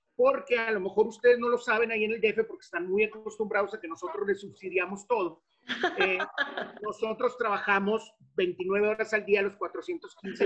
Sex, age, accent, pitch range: male, 40-59, Mexican, 195-245 Hz